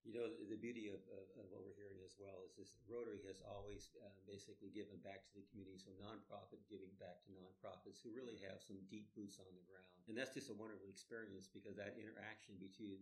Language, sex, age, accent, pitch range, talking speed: English, male, 50-69, American, 95-105 Hz, 230 wpm